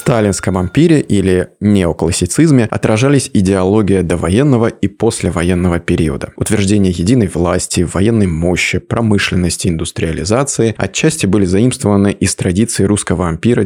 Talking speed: 110 wpm